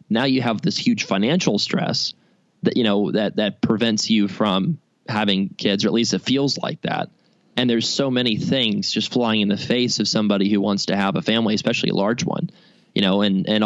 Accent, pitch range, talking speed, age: American, 110-140 Hz, 220 wpm, 20-39